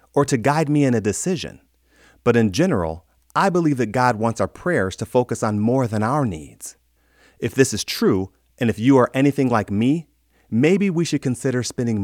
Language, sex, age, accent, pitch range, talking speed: English, male, 40-59, American, 100-135 Hz, 200 wpm